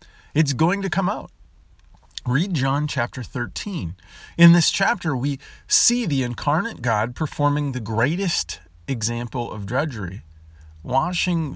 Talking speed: 125 wpm